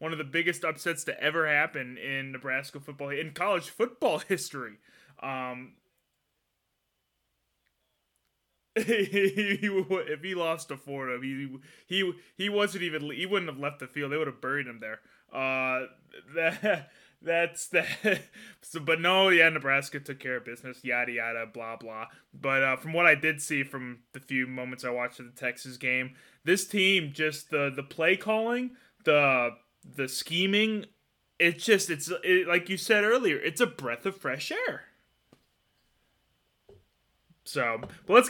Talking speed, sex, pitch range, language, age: 155 wpm, male, 135-195 Hz, English, 20-39